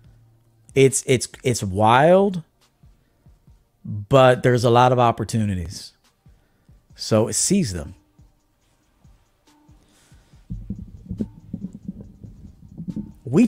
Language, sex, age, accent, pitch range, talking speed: English, male, 40-59, American, 110-150 Hz, 65 wpm